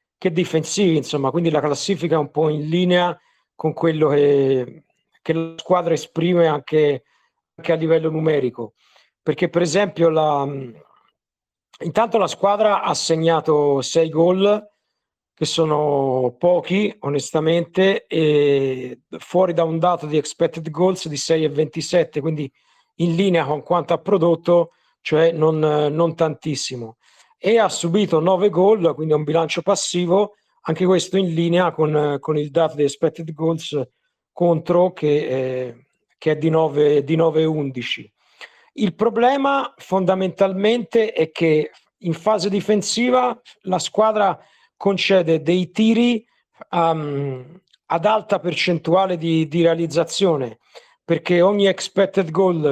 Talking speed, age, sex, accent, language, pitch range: 130 wpm, 50-69, male, native, Italian, 155-190 Hz